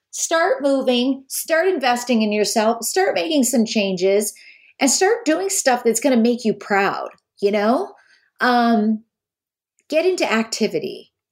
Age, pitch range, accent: 40-59, 175-245 Hz, American